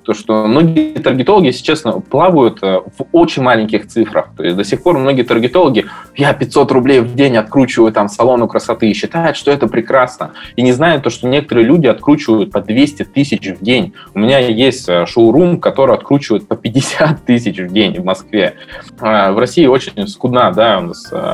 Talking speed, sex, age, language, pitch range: 185 wpm, male, 20-39, Russian, 110-145 Hz